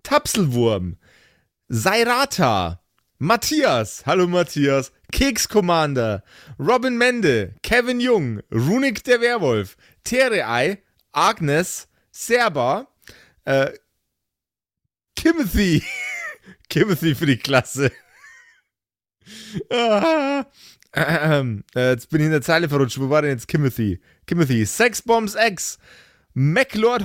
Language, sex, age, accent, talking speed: German, male, 30-49, German, 100 wpm